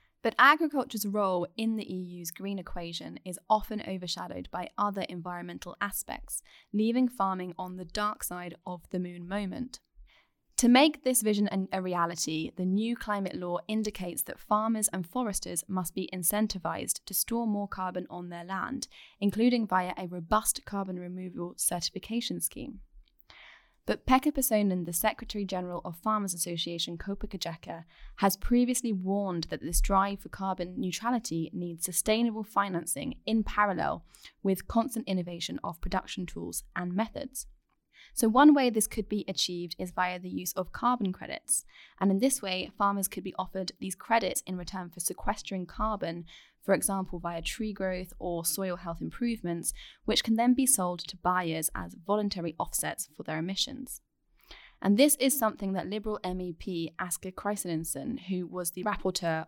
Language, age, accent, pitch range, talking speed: English, 10-29, British, 175-215 Hz, 155 wpm